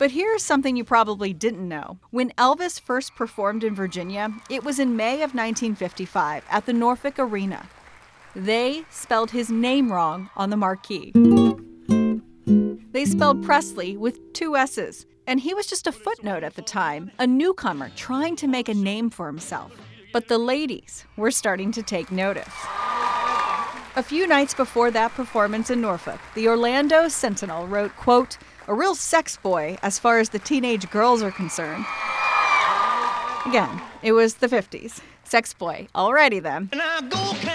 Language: English